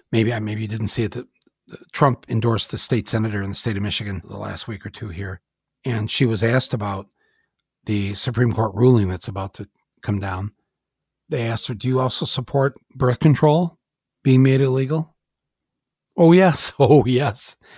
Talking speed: 180 wpm